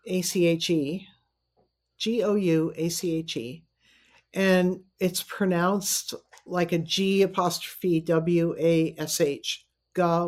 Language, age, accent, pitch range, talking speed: English, 50-69, American, 165-195 Hz, 140 wpm